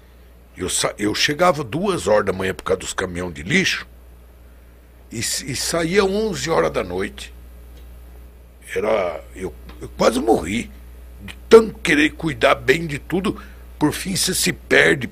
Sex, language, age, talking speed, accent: male, Portuguese, 60-79, 150 wpm, Brazilian